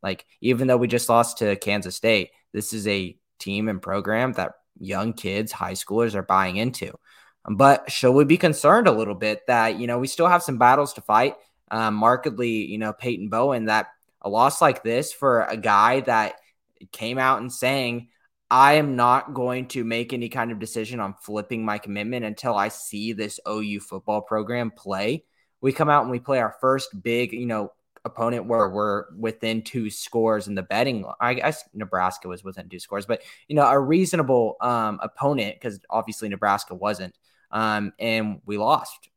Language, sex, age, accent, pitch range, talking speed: English, male, 20-39, American, 105-125 Hz, 190 wpm